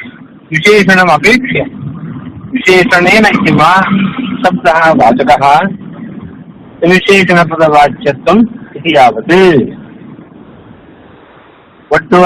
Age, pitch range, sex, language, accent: 60-79, 160-215 Hz, male, Kannada, native